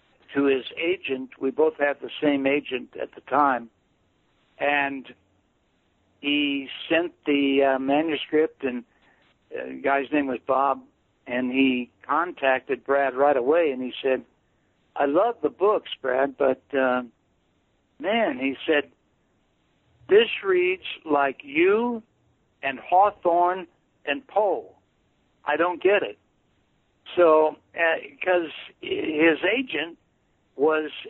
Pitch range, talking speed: 130-165 Hz, 120 wpm